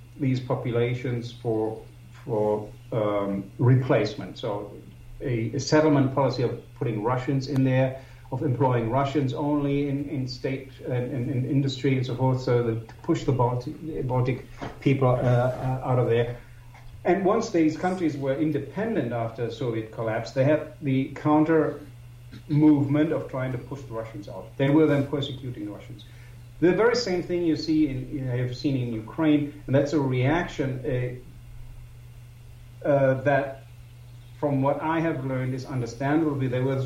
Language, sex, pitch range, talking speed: English, male, 120-145 Hz, 160 wpm